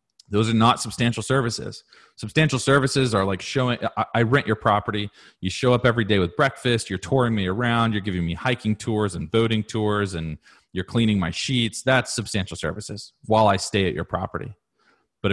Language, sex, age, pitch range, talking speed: English, male, 30-49, 100-125 Hz, 190 wpm